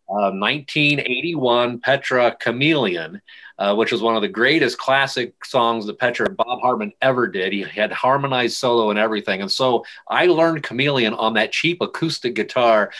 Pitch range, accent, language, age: 115-135 Hz, American, English, 30-49